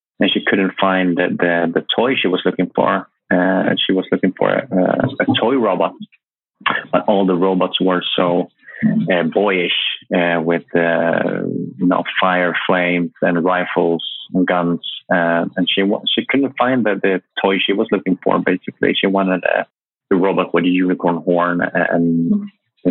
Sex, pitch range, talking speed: male, 90-100 Hz, 155 wpm